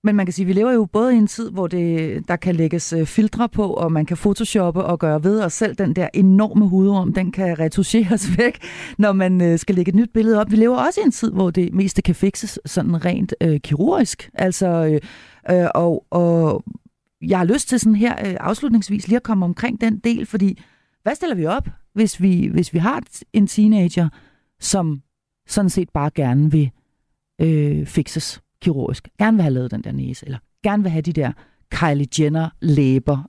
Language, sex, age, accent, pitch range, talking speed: Danish, female, 40-59, native, 165-215 Hz, 205 wpm